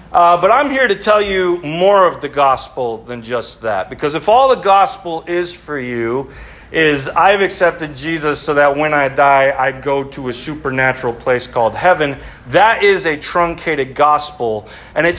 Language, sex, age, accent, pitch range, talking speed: English, male, 40-59, American, 135-180 Hz, 180 wpm